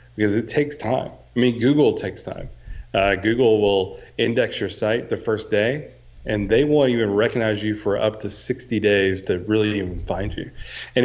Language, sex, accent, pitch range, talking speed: English, male, American, 95-115 Hz, 190 wpm